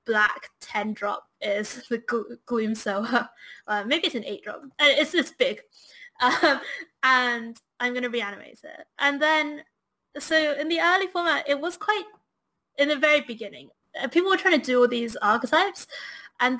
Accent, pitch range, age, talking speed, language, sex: British, 235-300 Hz, 20-39, 175 wpm, English, female